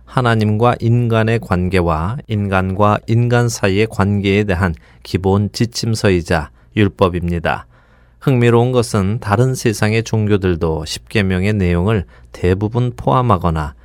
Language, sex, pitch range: Korean, male, 85-115 Hz